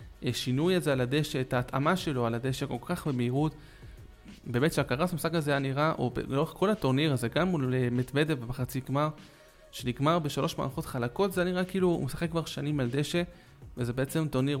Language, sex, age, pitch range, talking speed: Hebrew, male, 20-39, 125-155 Hz, 185 wpm